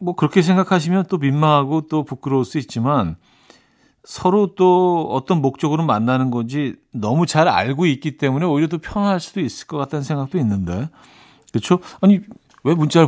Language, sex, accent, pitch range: Korean, male, native, 125-175 Hz